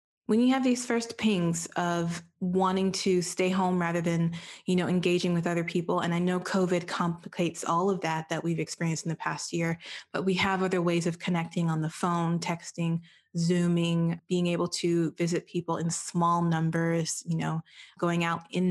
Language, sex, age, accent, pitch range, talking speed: English, female, 20-39, American, 170-190 Hz, 190 wpm